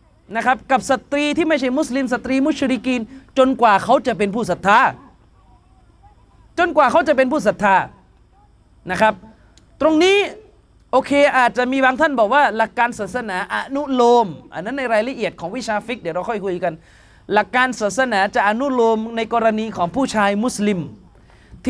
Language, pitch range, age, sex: Thai, 200-270 Hz, 30-49, male